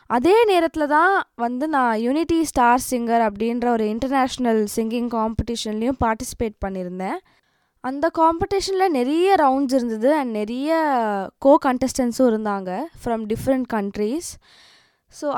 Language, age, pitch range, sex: Tamil, 20-39, 225-295 Hz, female